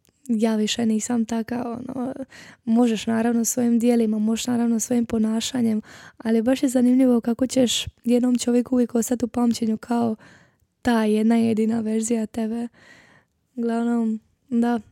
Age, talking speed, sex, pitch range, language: 10-29, 135 wpm, female, 220-245 Hz, Croatian